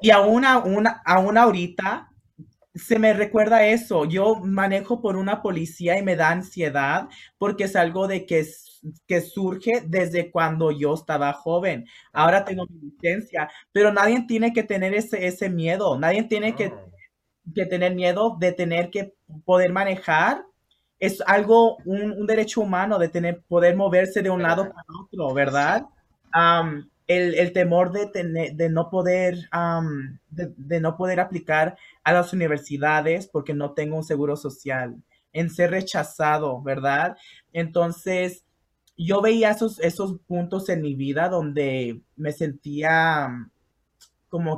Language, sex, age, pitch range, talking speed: English, male, 30-49, 155-195 Hz, 150 wpm